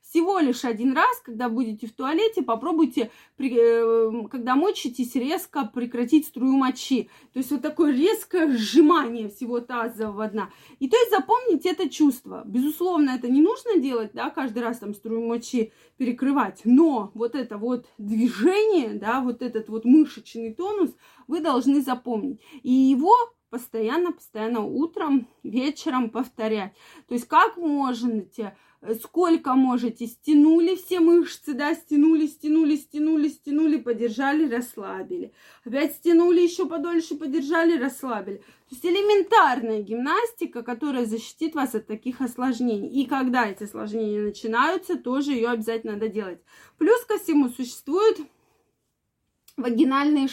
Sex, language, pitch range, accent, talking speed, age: female, Russian, 235-320 Hz, native, 130 wpm, 20-39